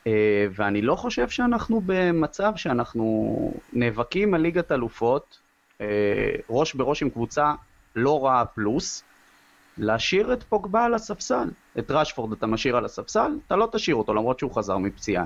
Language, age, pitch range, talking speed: Hebrew, 30-49, 110-170 Hz, 140 wpm